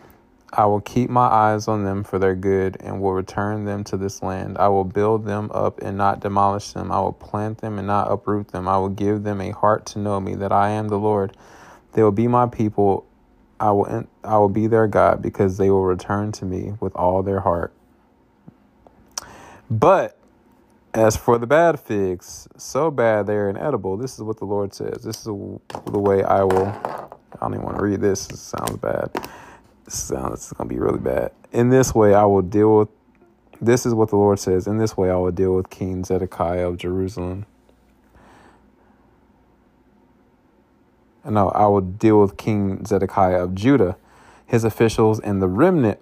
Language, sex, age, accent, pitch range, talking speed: English, male, 20-39, American, 95-105 Hz, 195 wpm